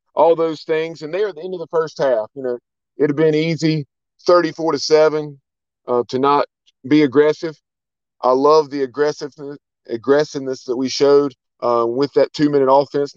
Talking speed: 180 wpm